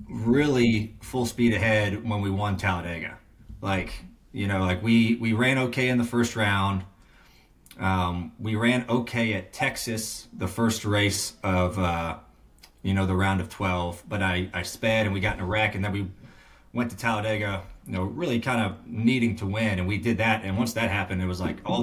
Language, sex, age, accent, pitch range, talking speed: English, male, 30-49, American, 95-115 Hz, 200 wpm